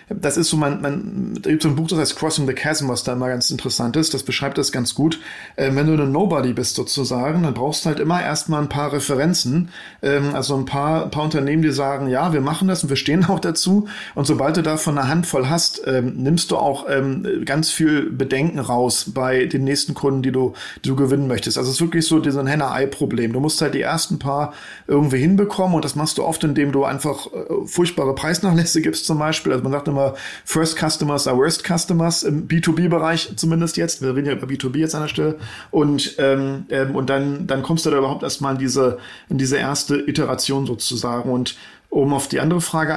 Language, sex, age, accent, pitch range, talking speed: German, male, 40-59, German, 135-165 Hz, 220 wpm